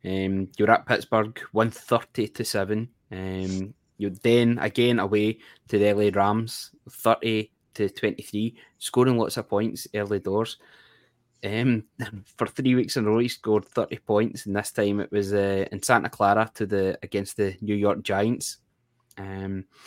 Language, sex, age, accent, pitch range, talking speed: English, male, 20-39, British, 100-120 Hz, 165 wpm